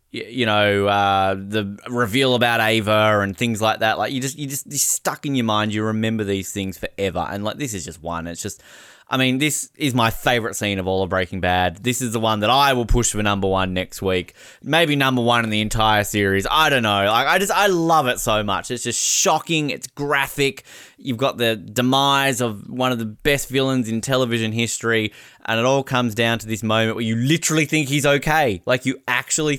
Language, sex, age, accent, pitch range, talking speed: English, male, 20-39, Australian, 105-130 Hz, 225 wpm